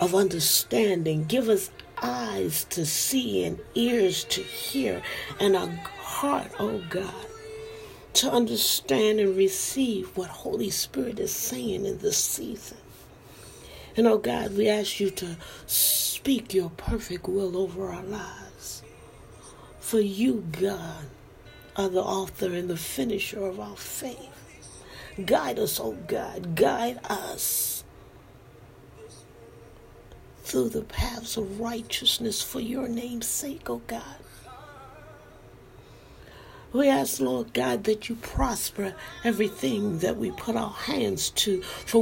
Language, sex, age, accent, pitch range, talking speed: English, female, 40-59, American, 185-230 Hz, 125 wpm